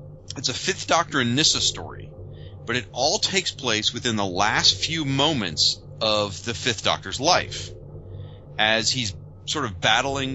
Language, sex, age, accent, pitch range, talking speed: English, male, 30-49, American, 100-130 Hz, 155 wpm